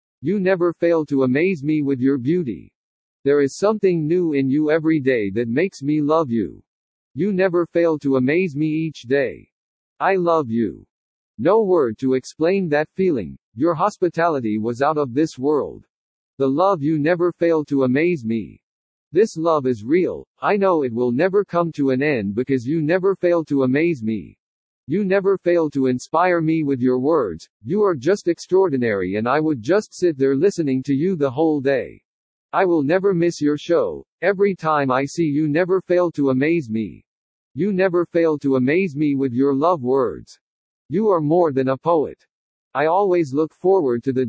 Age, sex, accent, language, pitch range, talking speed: 50-69, male, American, English, 135-175 Hz, 185 wpm